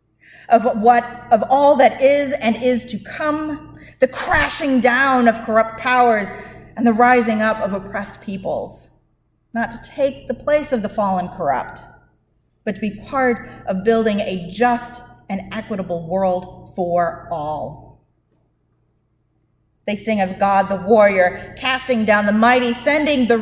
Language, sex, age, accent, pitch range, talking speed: English, female, 30-49, American, 195-250 Hz, 145 wpm